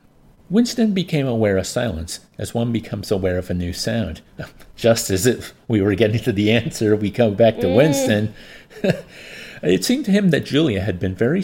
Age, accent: 50-69, American